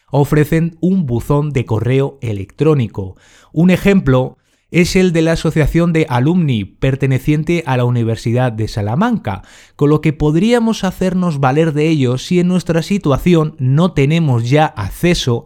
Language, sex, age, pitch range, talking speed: Spanish, male, 30-49, 125-170 Hz, 145 wpm